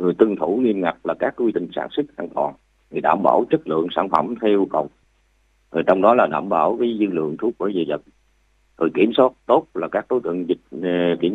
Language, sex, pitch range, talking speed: Vietnamese, male, 85-105 Hz, 245 wpm